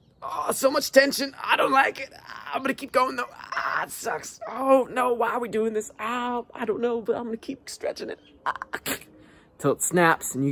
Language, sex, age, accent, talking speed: English, male, 20-39, American, 235 wpm